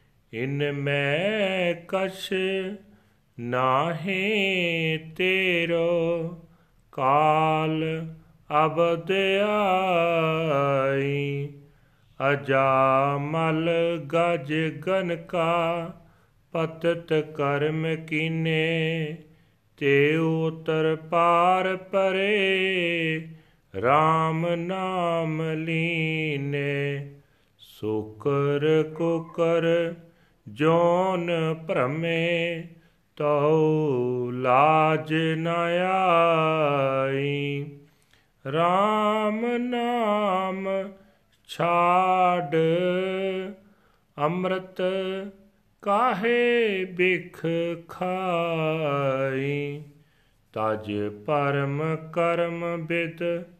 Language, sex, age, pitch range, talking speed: Punjabi, male, 40-59, 145-175 Hz, 45 wpm